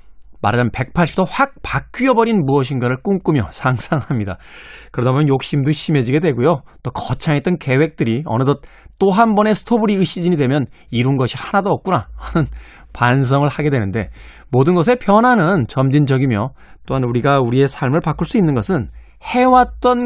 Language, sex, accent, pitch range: Korean, male, native, 120-170 Hz